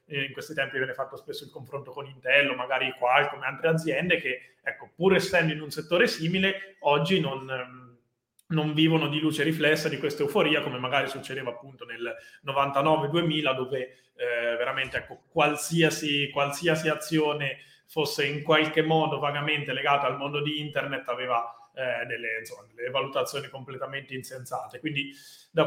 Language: Italian